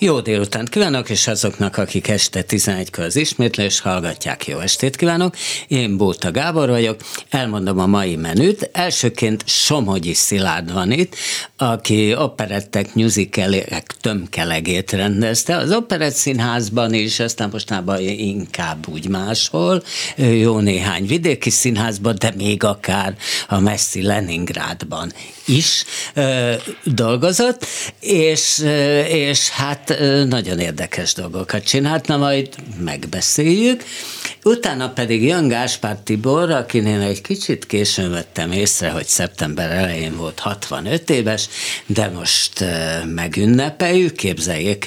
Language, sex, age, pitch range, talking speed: Hungarian, male, 50-69, 95-145 Hz, 115 wpm